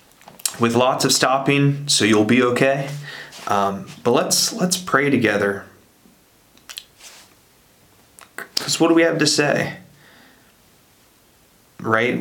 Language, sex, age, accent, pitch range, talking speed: English, male, 30-49, American, 110-140 Hz, 110 wpm